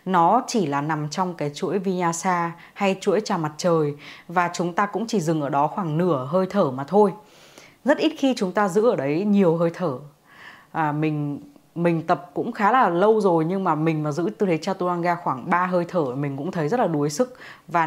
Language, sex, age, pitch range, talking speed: Vietnamese, female, 20-39, 155-195 Hz, 225 wpm